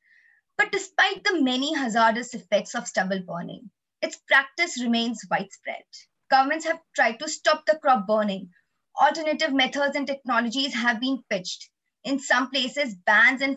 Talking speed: 145 wpm